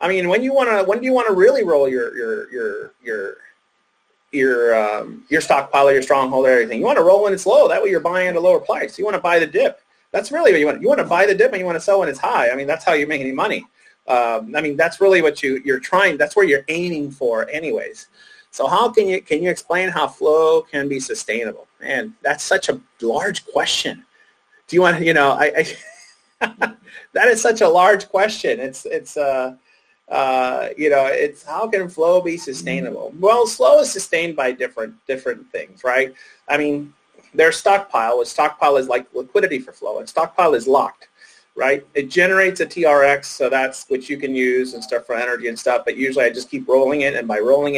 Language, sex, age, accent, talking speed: English, male, 30-49, American, 225 wpm